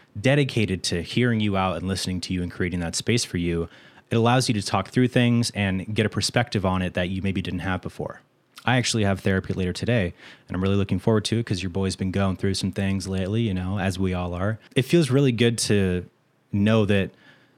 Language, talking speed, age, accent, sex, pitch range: English, 235 wpm, 30-49, American, male, 95-110 Hz